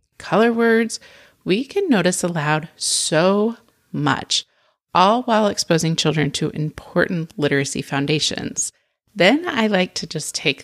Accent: American